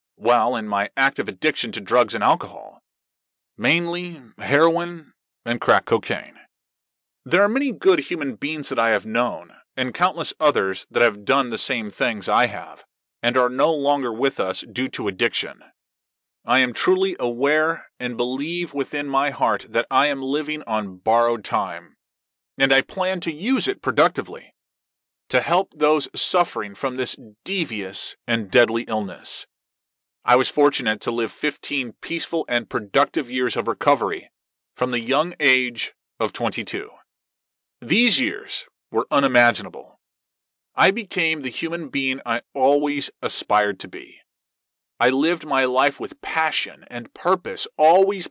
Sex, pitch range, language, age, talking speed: male, 120-170 Hz, English, 30-49, 145 wpm